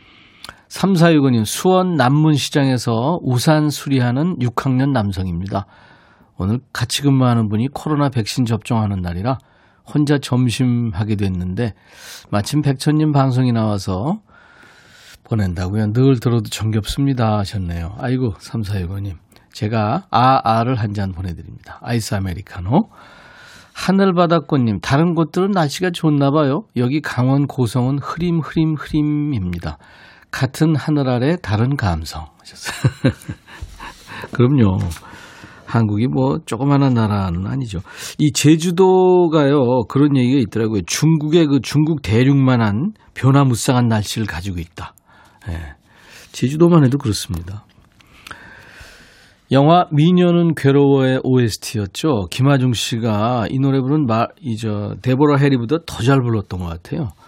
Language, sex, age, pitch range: Korean, male, 40-59, 105-145 Hz